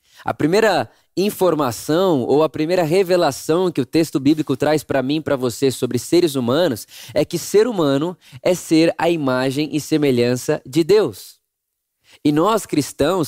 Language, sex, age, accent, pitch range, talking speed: Portuguese, male, 20-39, Brazilian, 145-190 Hz, 155 wpm